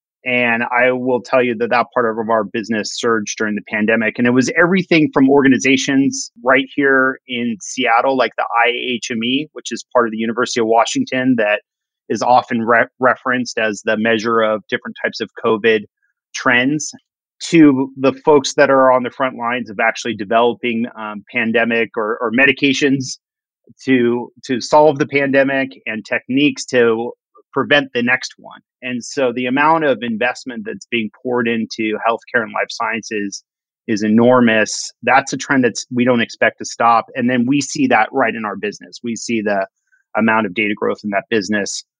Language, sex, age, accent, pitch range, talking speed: English, male, 30-49, American, 115-145 Hz, 175 wpm